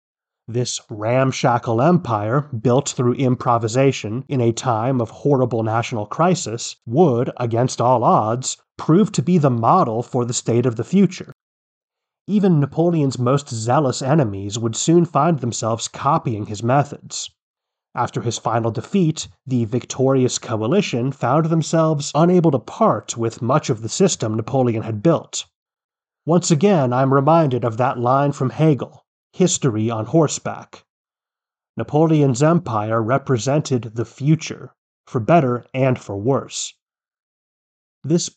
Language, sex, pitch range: English, male, 115-155 Hz